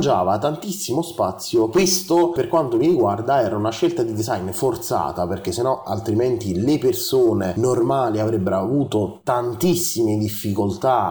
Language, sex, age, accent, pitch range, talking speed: Italian, male, 30-49, native, 100-165 Hz, 125 wpm